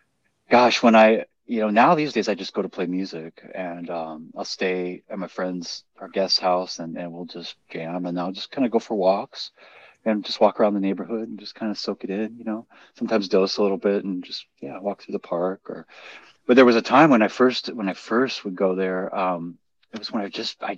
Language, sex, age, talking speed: English, male, 30-49, 245 wpm